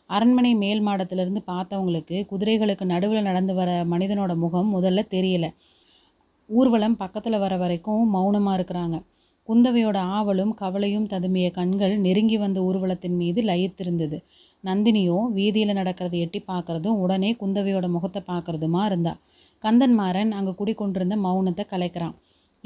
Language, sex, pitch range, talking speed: Tamil, female, 180-215 Hz, 115 wpm